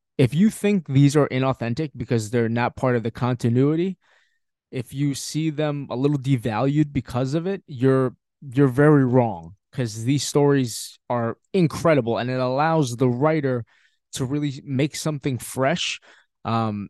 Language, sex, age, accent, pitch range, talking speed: English, male, 20-39, American, 120-150 Hz, 155 wpm